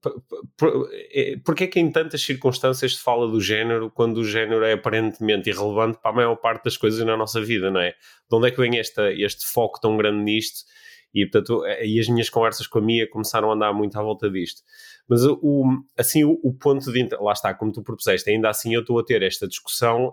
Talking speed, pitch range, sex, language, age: 225 wpm, 105-130 Hz, male, Portuguese, 20-39